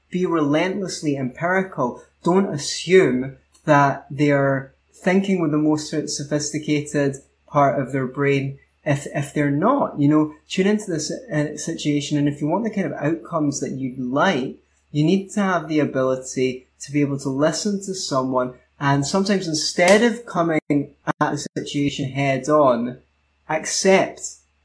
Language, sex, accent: English, male, British